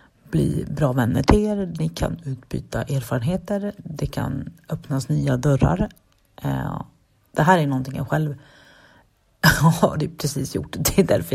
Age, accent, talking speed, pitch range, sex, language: 30-49, native, 135 wpm, 130-165 Hz, female, Swedish